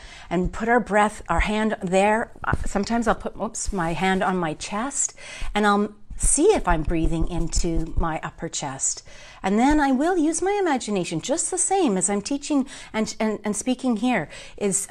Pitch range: 170-220 Hz